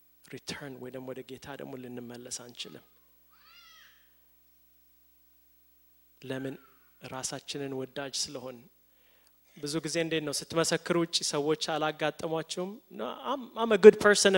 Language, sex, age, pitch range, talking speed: English, male, 20-39, 125-185 Hz, 140 wpm